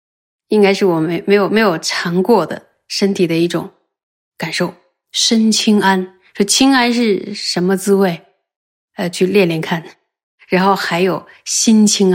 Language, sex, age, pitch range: Chinese, female, 20-39, 180-210 Hz